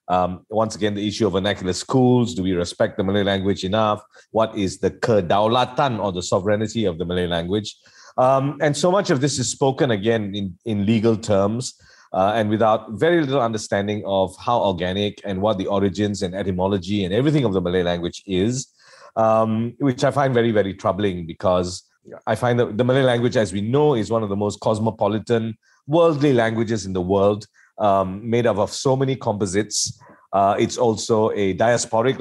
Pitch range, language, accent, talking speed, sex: 95-120 Hz, English, Malaysian, 190 wpm, male